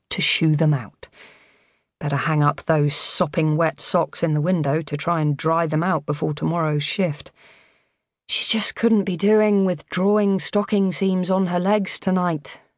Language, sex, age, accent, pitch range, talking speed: English, female, 30-49, British, 150-185 Hz, 170 wpm